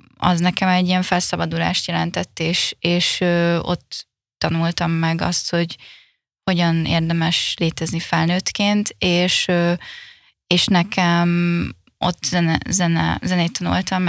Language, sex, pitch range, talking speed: Hungarian, female, 170-185 Hz, 100 wpm